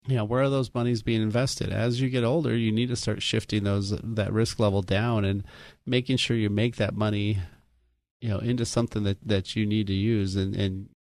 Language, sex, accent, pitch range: English, male, American, 95-120 Hz